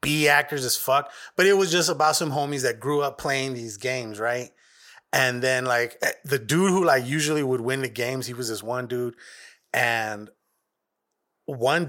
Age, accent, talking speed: 30-49, American, 185 wpm